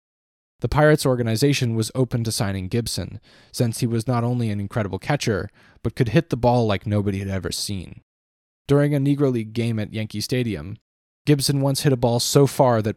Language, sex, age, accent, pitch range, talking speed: English, male, 20-39, American, 95-125 Hz, 195 wpm